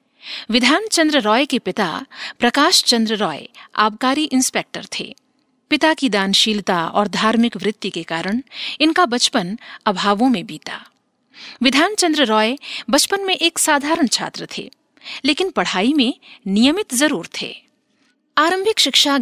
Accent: native